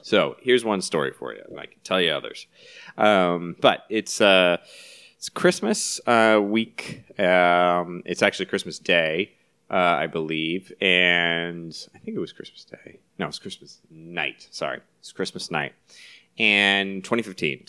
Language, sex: English, male